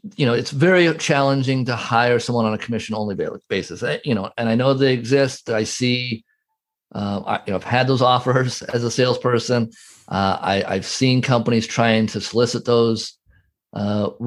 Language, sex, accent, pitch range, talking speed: English, male, American, 110-140 Hz, 180 wpm